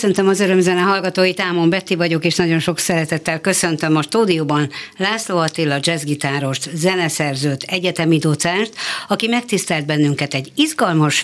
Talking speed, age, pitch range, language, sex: 135 wpm, 60-79, 150-185 Hz, Hungarian, female